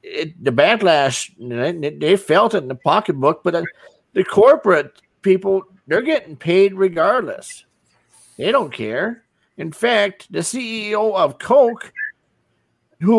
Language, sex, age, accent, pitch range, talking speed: English, male, 50-69, American, 190-245 Hz, 125 wpm